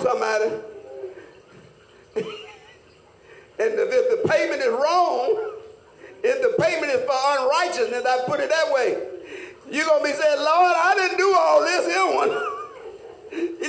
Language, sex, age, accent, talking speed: English, male, 50-69, American, 140 wpm